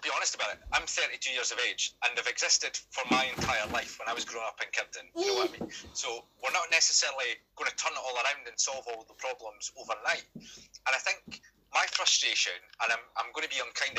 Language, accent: English, British